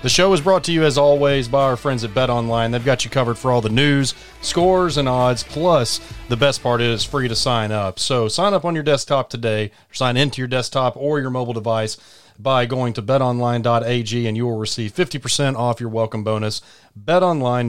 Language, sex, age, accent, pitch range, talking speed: English, male, 30-49, American, 115-135 Hz, 215 wpm